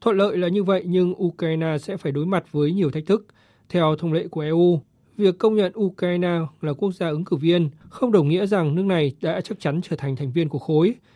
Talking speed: 240 wpm